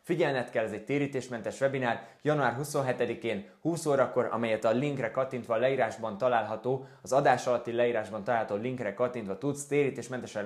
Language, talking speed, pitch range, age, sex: Hungarian, 150 wpm, 115-140 Hz, 20-39, male